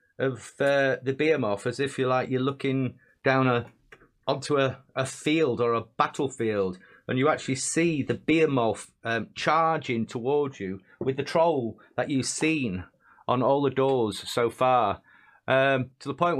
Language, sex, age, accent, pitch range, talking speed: English, male, 30-49, British, 120-150 Hz, 165 wpm